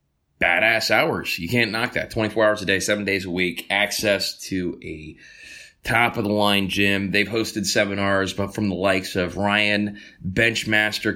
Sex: male